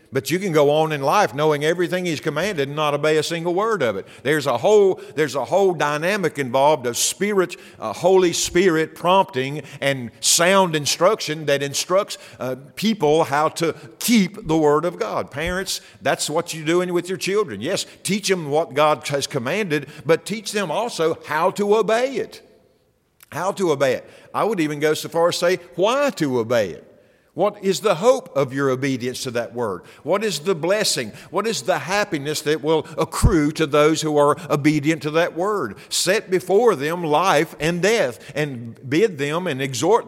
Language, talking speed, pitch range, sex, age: English, 190 wpm, 135-180 Hz, male, 50-69